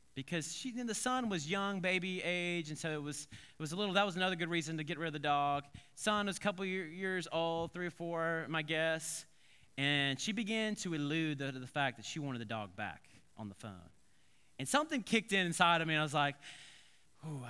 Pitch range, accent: 145-185 Hz, American